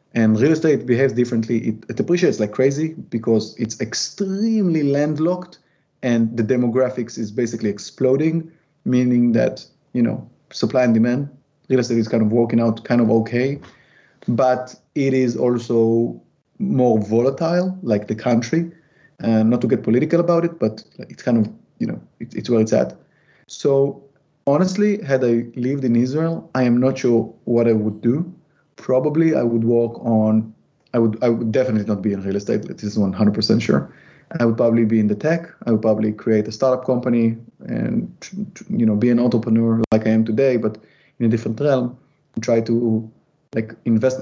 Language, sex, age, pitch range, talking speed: English, male, 30-49, 115-135 Hz, 175 wpm